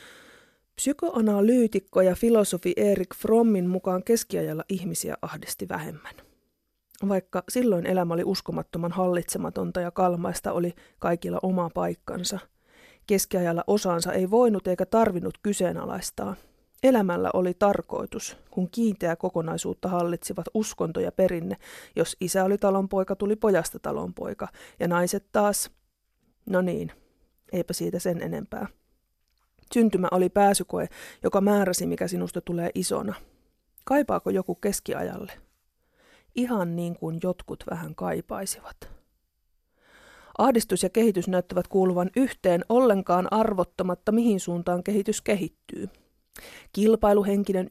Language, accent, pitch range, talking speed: Finnish, native, 180-210 Hz, 110 wpm